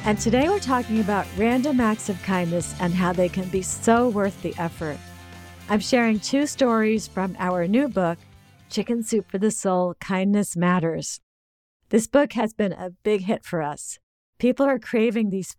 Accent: American